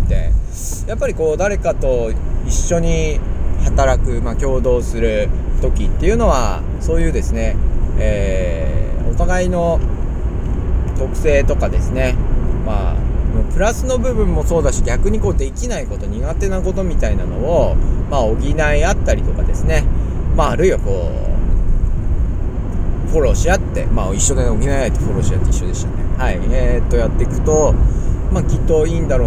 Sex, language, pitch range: male, Japanese, 90-115 Hz